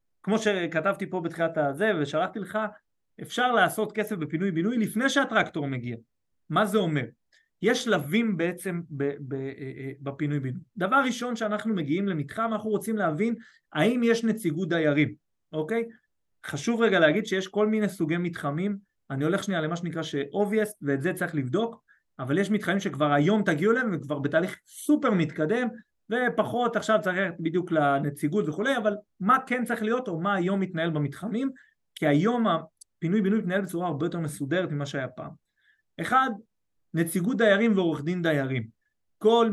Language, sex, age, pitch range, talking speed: Hebrew, male, 30-49, 155-220 Hz, 155 wpm